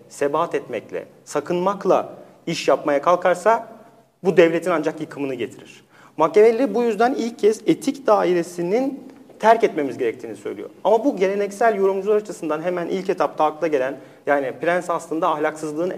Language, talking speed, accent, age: Turkish, 135 wpm, native, 40-59